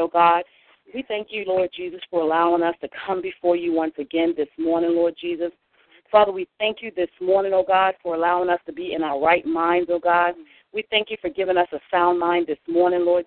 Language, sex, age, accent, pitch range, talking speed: English, female, 40-59, American, 175-210 Hz, 230 wpm